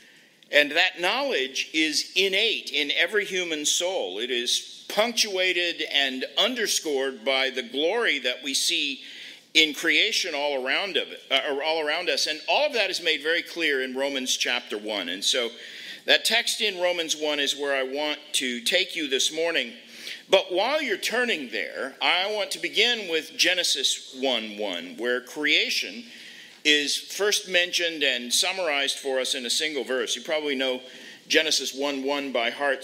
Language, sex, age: English, male, 50-69